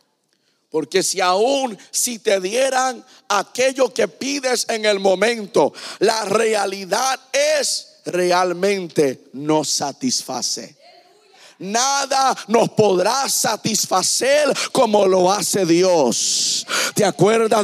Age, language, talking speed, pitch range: 50-69, Spanish, 95 wpm, 185-250 Hz